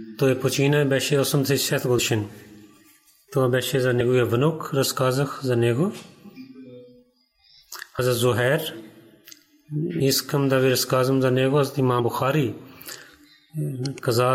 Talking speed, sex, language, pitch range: 105 wpm, male, Bulgarian, 125-150 Hz